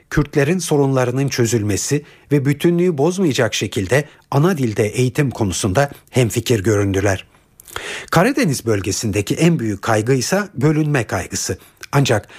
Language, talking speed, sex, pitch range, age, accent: Turkish, 105 wpm, male, 110-150 Hz, 60-79, native